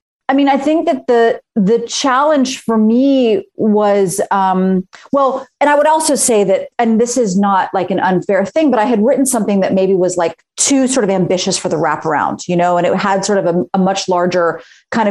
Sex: female